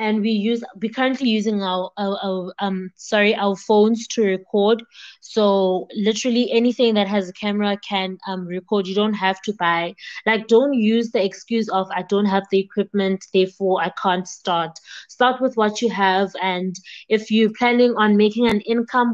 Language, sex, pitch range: English, female, 195-220 Hz